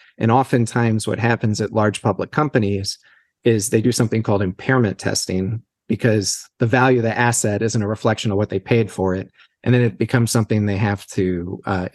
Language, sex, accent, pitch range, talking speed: English, male, American, 105-130 Hz, 195 wpm